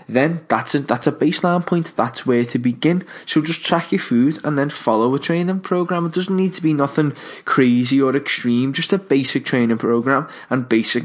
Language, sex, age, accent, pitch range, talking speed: English, male, 10-29, British, 120-155 Hz, 205 wpm